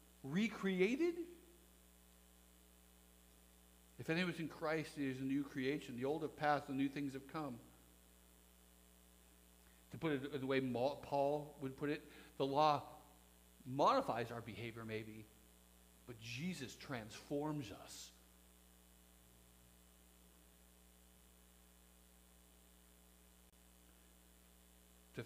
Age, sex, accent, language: 60-79, male, American, English